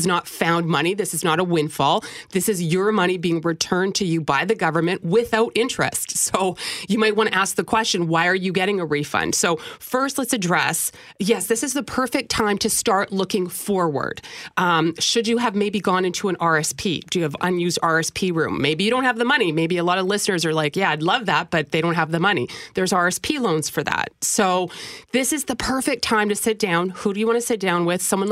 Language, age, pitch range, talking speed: English, 30-49, 170-225 Hz, 235 wpm